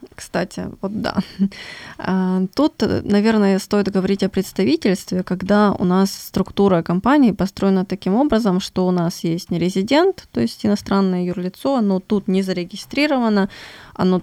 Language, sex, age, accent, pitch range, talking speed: Ukrainian, female, 20-39, native, 185-220 Hz, 130 wpm